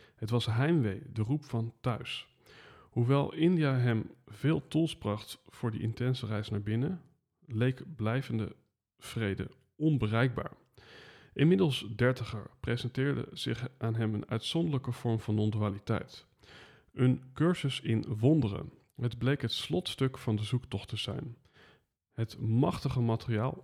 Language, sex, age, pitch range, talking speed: Dutch, male, 40-59, 110-135 Hz, 125 wpm